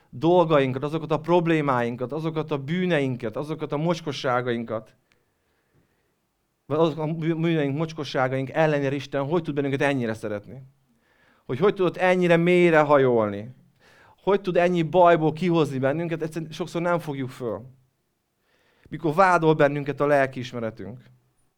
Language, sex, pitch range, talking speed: Hungarian, male, 130-160 Hz, 120 wpm